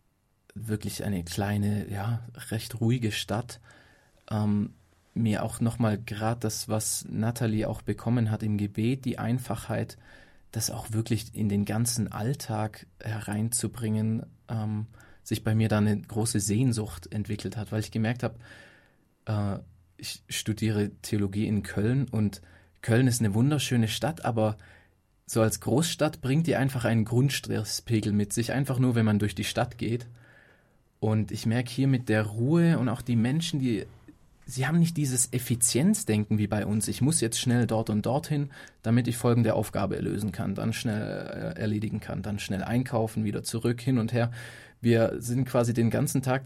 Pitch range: 110-125 Hz